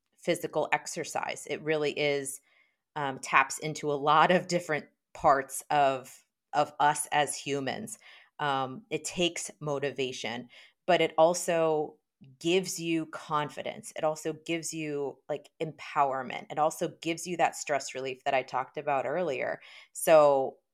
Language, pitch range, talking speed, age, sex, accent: English, 140-170 Hz, 130 wpm, 30-49, female, American